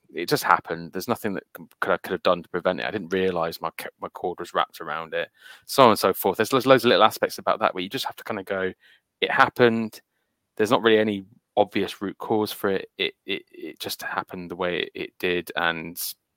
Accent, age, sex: British, 20-39, male